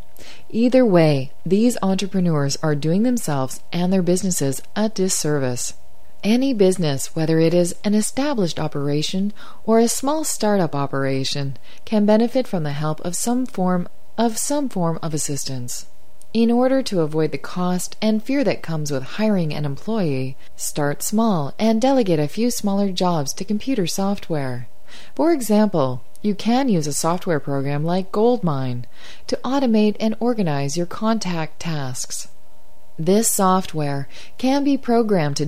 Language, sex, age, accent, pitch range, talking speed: English, female, 30-49, American, 145-220 Hz, 145 wpm